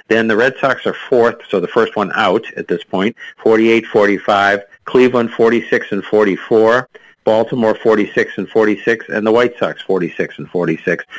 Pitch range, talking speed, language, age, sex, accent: 95-115 Hz, 160 wpm, English, 50-69, male, American